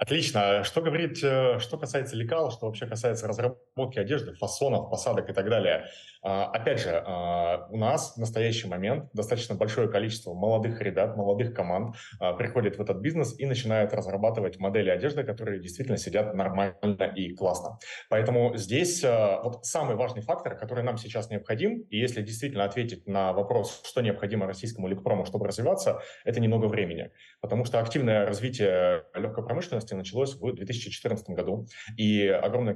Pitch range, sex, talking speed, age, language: 100-120 Hz, male, 150 wpm, 30-49, Russian